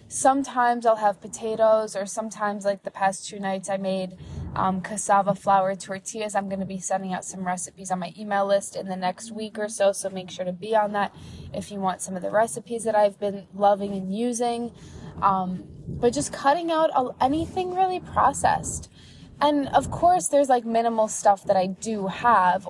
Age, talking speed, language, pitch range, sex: 20-39, 195 wpm, English, 185-220 Hz, female